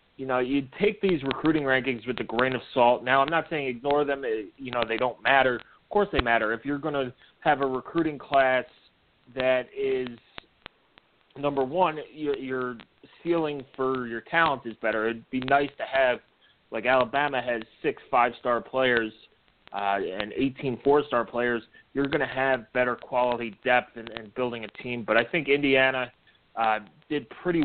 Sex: male